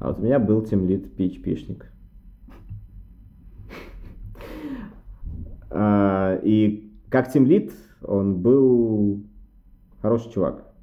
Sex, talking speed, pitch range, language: male, 85 wpm, 90-105 Hz, Russian